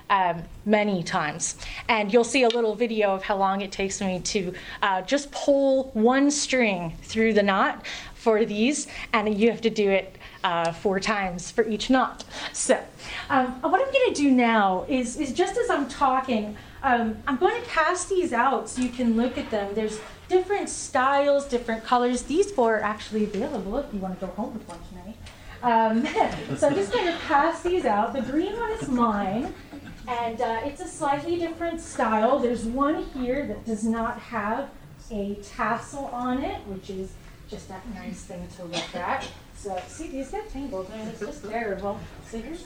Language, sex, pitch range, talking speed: English, female, 210-270 Hz, 190 wpm